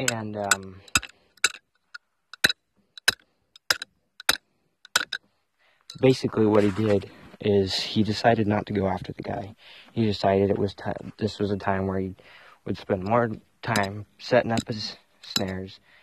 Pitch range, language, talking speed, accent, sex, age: 95-105 Hz, English, 125 wpm, American, male, 30-49